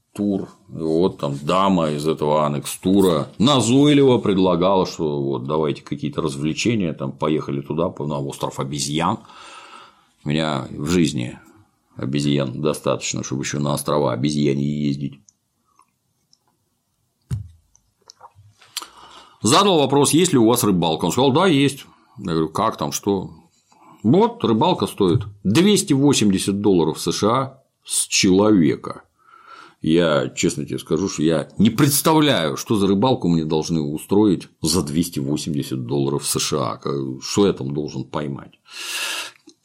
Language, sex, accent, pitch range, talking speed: Russian, male, native, 70-105 Hz, 120 wpm